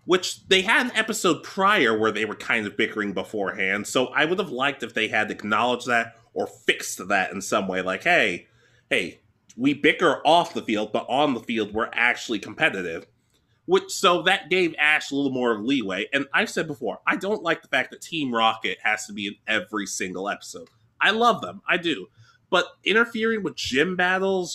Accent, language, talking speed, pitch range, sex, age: American, English, 205 wpm, 115-165 Hz, male, 20-39